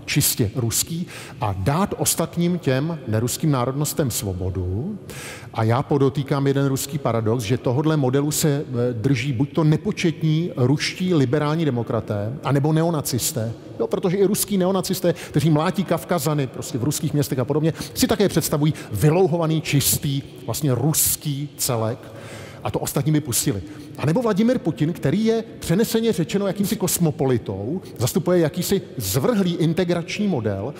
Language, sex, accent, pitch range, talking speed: Czech, male, native, 130-170 Hz, 135 wpm